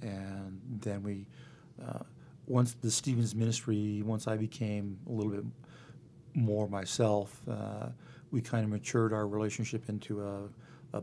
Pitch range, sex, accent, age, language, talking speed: 105-120 Hz, male, American, 50-69, English, 140 wpm